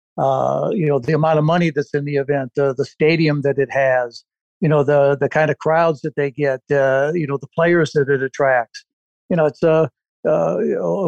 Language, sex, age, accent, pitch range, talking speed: English, male, 60-79, American, 150-175 Hz, 220 wpm